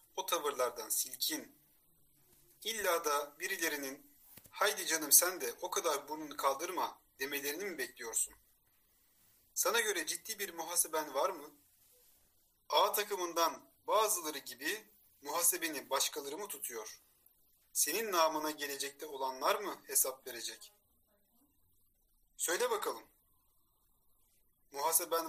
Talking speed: 100 wpm